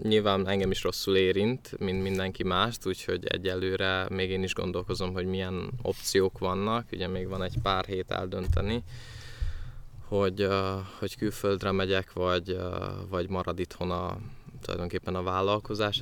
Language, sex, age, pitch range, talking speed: Hungarian, male, 20-39, 95-105 Hz, 140 wpm